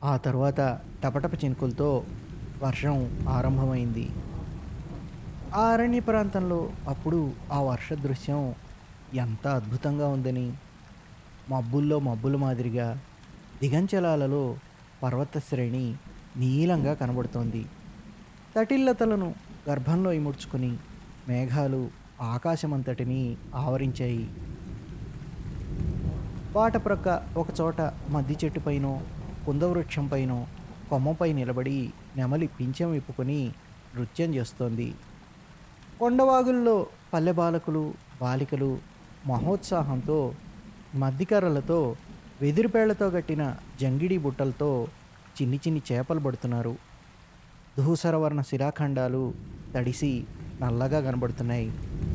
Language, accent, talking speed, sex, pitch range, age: Telugu, native, 70 wpm, male, 130-165 Hz, 20-39